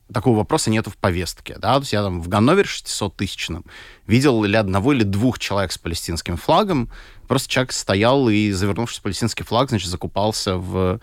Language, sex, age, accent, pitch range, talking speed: Russian, male, 20-39, native, 95-115 Hz, 180 wpm